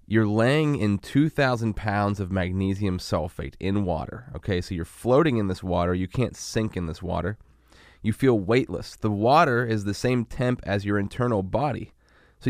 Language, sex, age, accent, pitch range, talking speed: English, male, 20-39, American, 95-115 Hz, 180 wpm